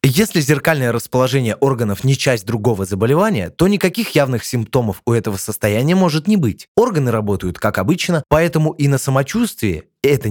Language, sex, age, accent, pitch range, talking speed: Russian, male, 20-39, native, 115-160 Hz, 155 wpm